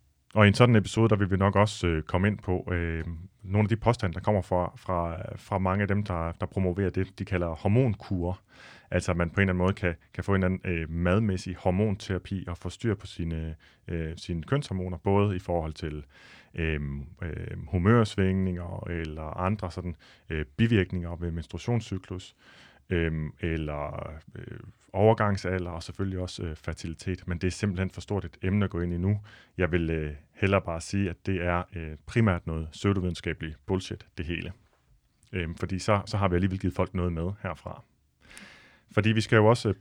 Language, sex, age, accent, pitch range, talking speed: Danish, male, 30-49, native, 85-105 Hz, 195 wpm